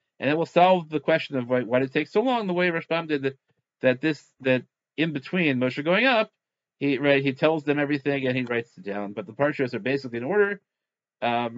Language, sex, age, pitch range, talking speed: English, male, 40-59, 120-155 Hz, 240 wpm